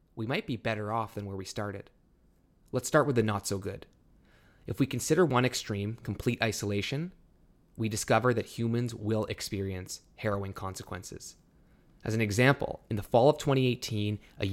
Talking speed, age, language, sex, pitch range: 165 wpm, 20-39, English, male, 105-130 Hz